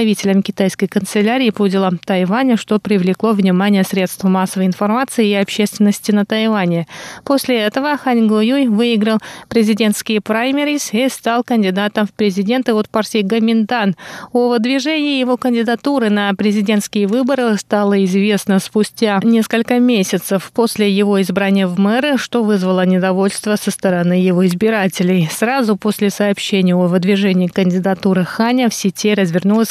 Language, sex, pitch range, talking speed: Russian, female, 195-230 Hz, 135 wpm